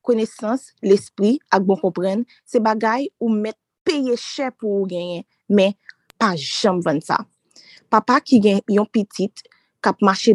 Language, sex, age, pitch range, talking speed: French, female, 20-39, 195-250 Hz, 145 wpm